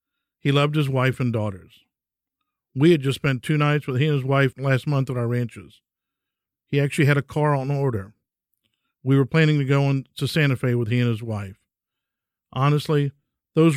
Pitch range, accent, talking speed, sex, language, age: 115-140 Hz, American, 195 wpm, male, English, 50-69